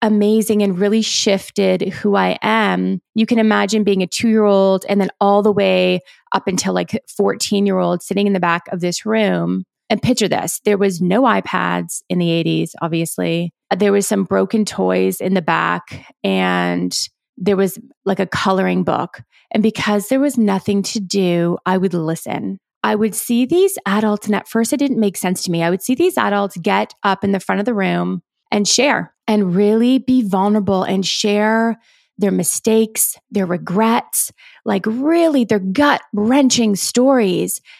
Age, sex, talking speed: 30-49, female, 175 wpm